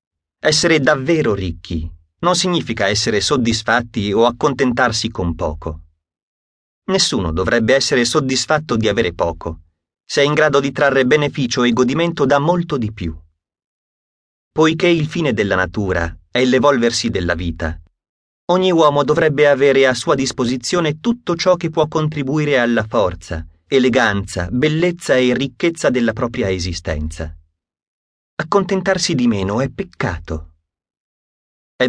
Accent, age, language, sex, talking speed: native, 30-49, Italian, male, 125 wpm